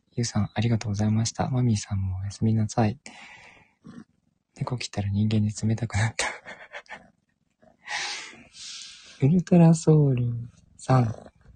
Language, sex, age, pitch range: Japanese, male, 20-39, 105-130 Hz